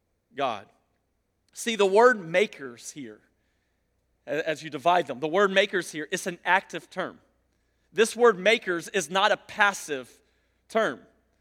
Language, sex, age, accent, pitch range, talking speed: English, male, 40-59, American, 185-255 Hz, 135 wpm